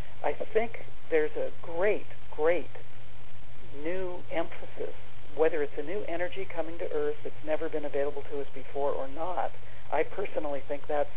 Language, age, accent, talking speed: English, 60-79, American, 155 wpm